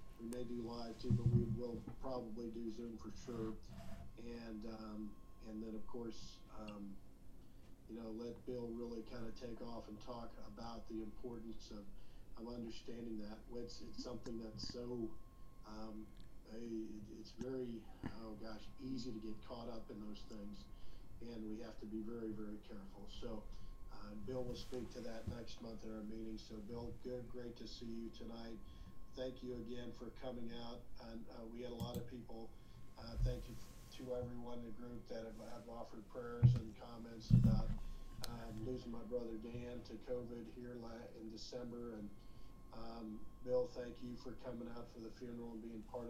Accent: American